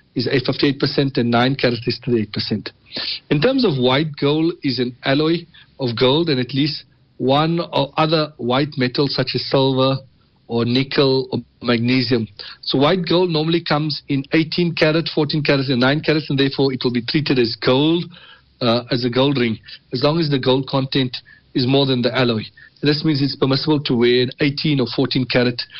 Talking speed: 185 wpm